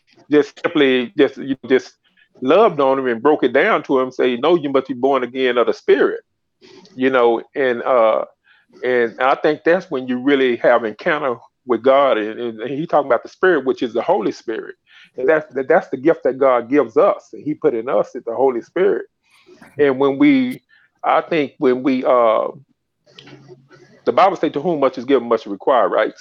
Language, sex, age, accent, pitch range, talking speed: English, male, 40-59, American, 130-220 Hz, 200 wpm